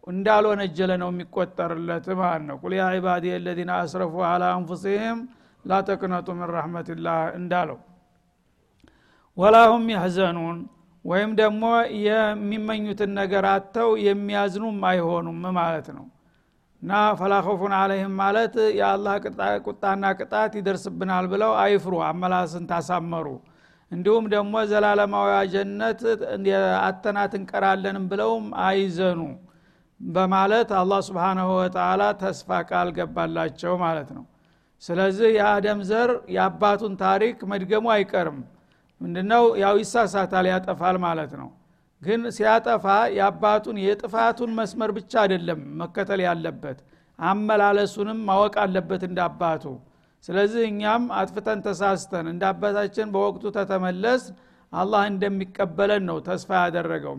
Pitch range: 180-210 Hz